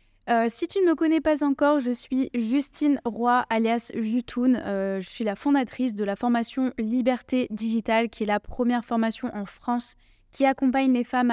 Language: French